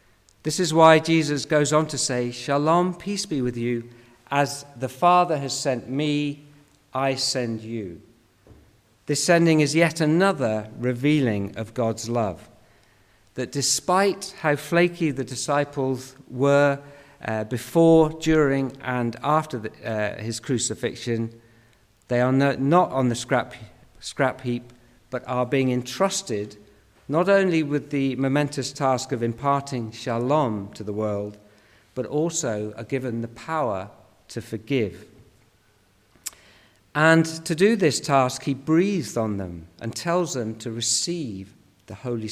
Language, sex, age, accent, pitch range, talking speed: English, male, 50-69, British, 110-145 Hz, 135 wpm